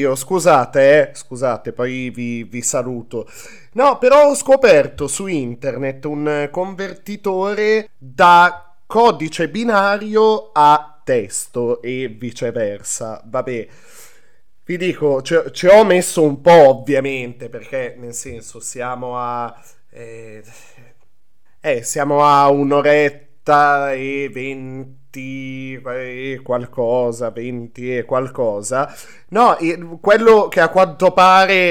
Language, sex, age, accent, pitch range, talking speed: Italian, male, 30-49, native, 120-160 Hz, 105 wpm